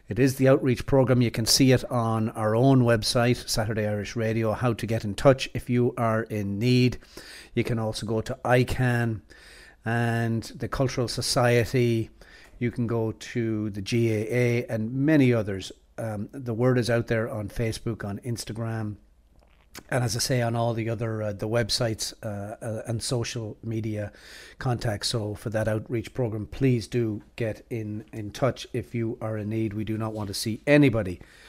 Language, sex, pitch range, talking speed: English, male, 110-125 Hz, 180 wpm